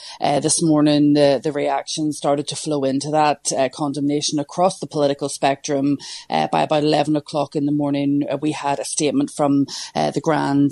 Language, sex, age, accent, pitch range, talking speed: English, female, 30-49, Irish, 140-155 Hz, 190 wpm